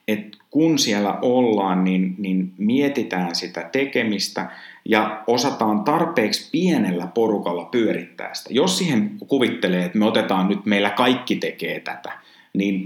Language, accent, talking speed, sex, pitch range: Finnish, native, 130 wpm, male, 90-115 Hz